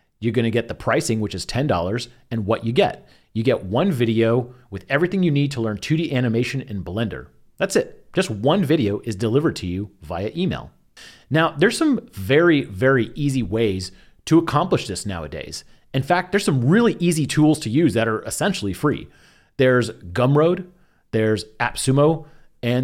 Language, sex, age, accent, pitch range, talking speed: English, male, 30-49, American, 115-160 Hz, 175 wpm